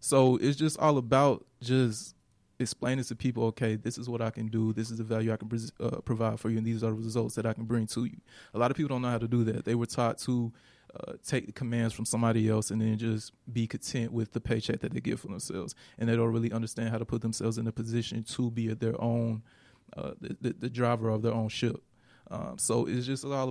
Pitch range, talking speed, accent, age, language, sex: 115-120 Hz, 260 wpm, American, 20-39, English, male